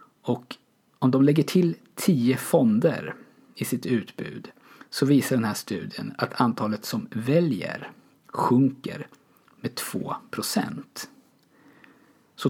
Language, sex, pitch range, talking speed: Swedish, male, 110-145 Hz, 110 wpm